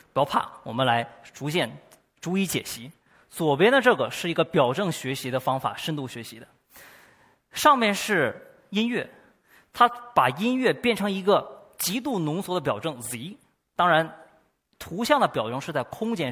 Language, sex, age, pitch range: Chinese, male, 20-39, 135-220 Hz